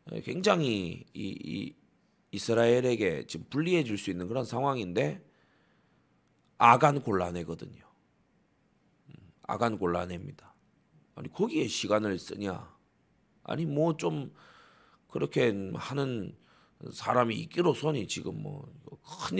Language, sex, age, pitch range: Korean, male, 40-59, 115-175 Hz